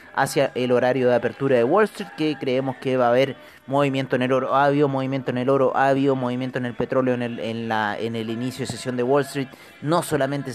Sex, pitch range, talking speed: male, 115-140 Hz, 250 wpm